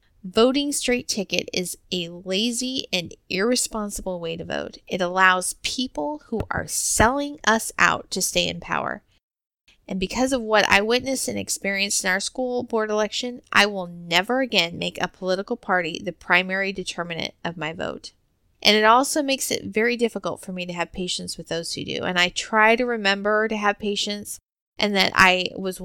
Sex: female